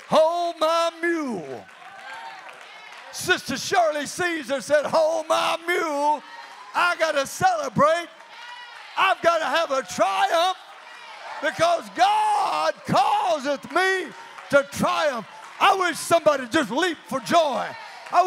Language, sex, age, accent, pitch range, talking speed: English, male, 50-69, American, 290-355 Hz, 105 wpm